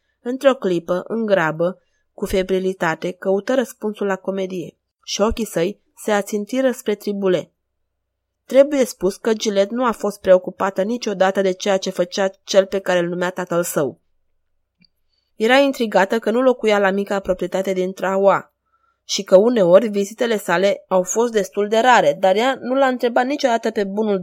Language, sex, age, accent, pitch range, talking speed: Romanian, female, 20-39, native, 185-225 Hz, 160 wpm